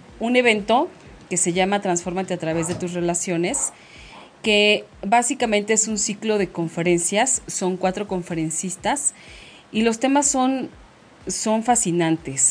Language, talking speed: Spanish, 130 wpm